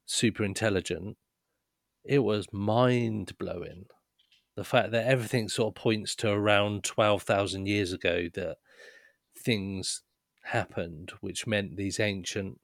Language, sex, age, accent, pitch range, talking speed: English, male, 40-59, British, 95-115 Hz, 125 wpm